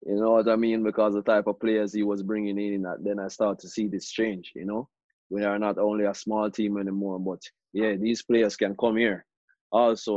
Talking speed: 230 wpm